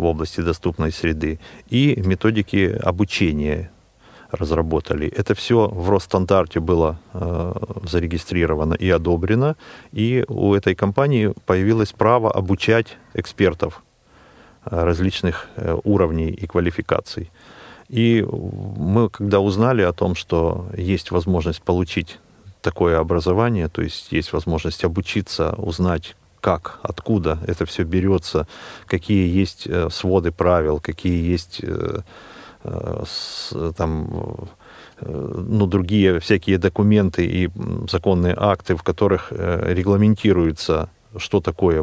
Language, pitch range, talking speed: Russian, 85-100 Hz, 100 wpm